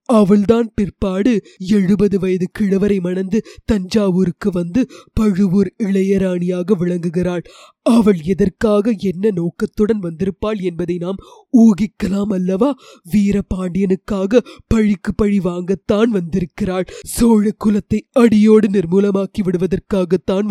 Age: 20-39